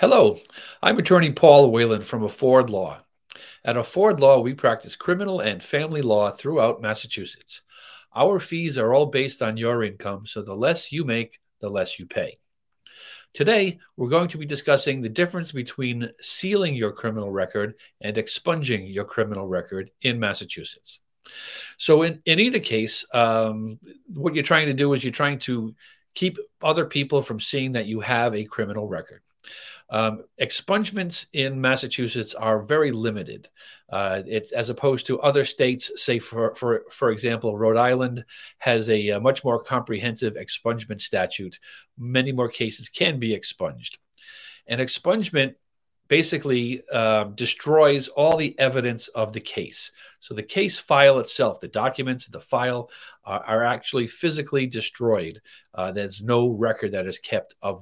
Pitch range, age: 110-150 Hz, 40-59